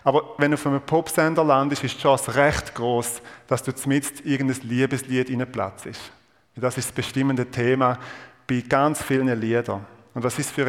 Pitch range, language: 115-135 Hz, German